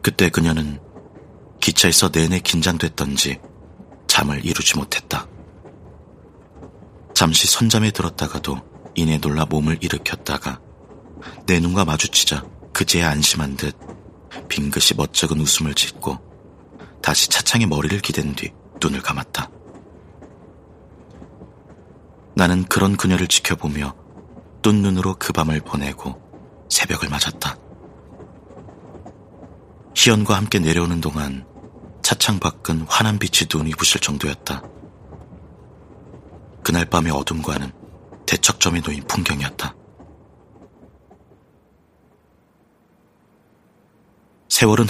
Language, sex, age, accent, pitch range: Korean, male, 30-49, native, 75-90 Hz